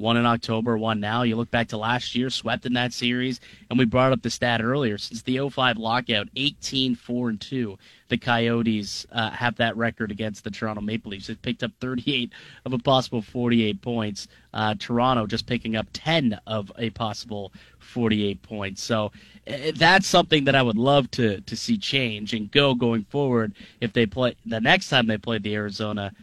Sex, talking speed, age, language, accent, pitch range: male, 190 wpm, 30-49, English, American, 110-135 Hz